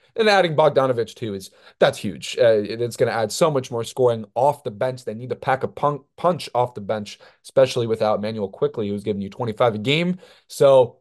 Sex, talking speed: male, 225 wpm